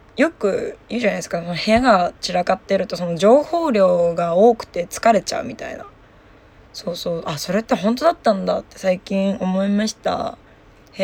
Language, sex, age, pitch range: Japanese, female, 20-39, 175-225 Hz